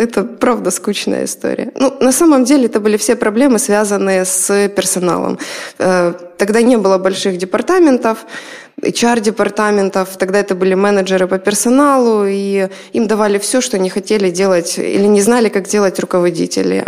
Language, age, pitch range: Ukrainian, 20-39, 185-220 Hz